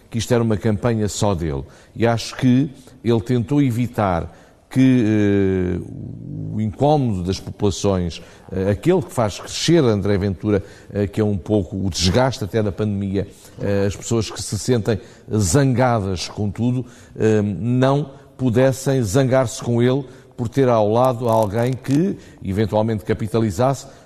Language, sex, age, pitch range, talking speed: Portuguese, male, 50-69, 100-125 Hz, 145 wpm